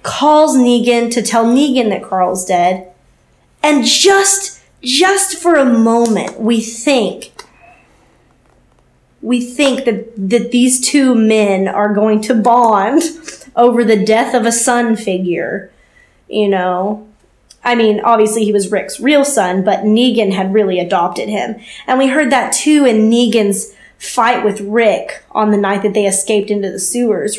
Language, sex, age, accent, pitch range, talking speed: English, female, 20-39, American, 210-255 Hz, 150 wpm